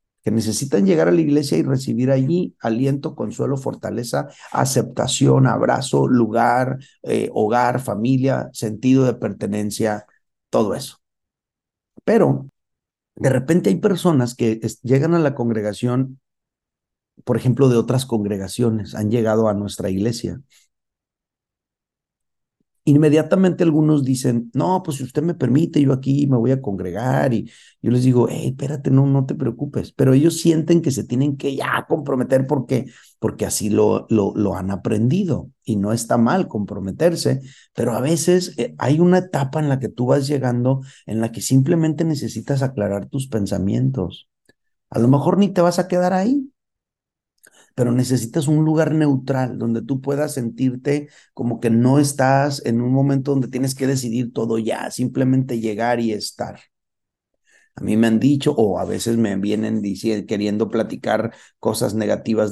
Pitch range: 115-145 Hz